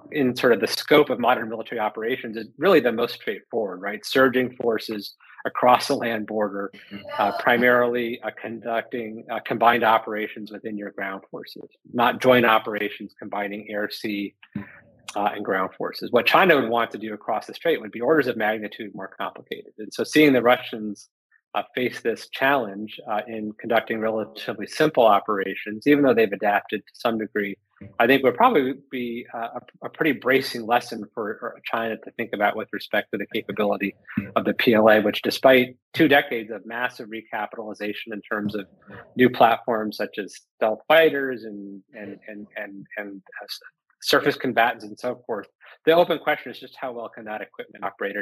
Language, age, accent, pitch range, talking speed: English, 30-49, American, 105-125 Hz, 175 wpm